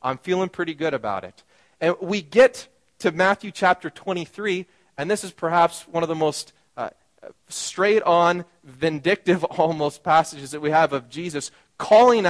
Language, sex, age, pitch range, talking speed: English, male, 30-49, 150-185 Hz, 155 wpm